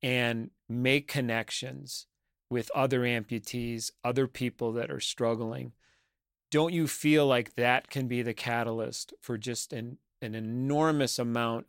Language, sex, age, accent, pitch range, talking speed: English, male, 40-59, American, 115-135 Hz, 135 wpm